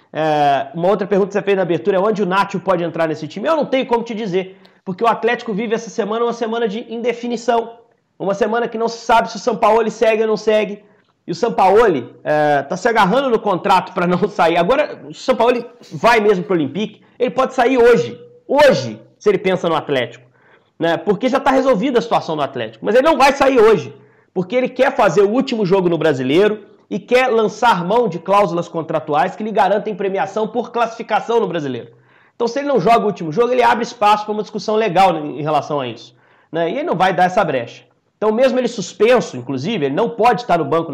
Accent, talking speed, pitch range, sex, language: Brazilian, 225 wpm, 180-235 Hz, male, Portuguese